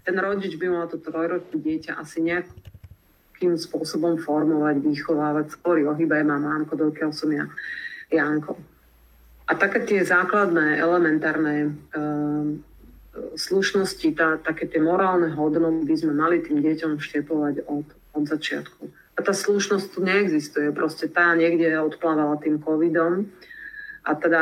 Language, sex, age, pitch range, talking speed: English, female, 40-59, 155-180 Hz, 135 wpm